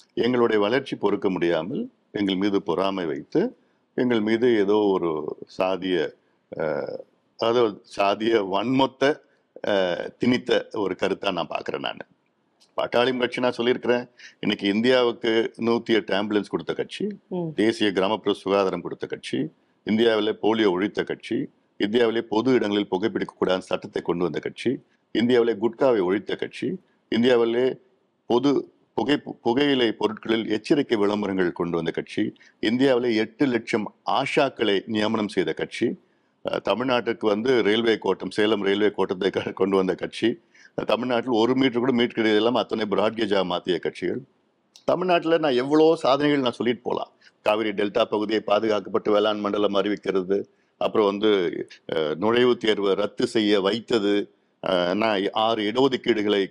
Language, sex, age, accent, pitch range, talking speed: Tamil, male, 50-69, native, 100-120 Hz, 120 wpm